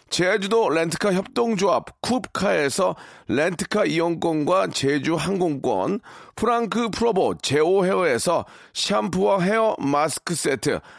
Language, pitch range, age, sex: Korean, 160-215 Hz, 40-59, male